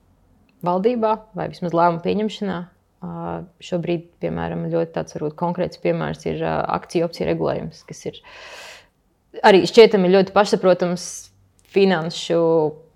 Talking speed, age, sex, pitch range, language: 110 wpm, 20-39, female, 160-190 Hz, English